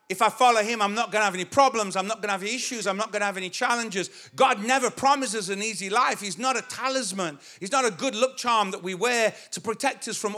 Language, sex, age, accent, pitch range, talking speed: English, male, 50-69, British, 190-255 Hz, 270 wpm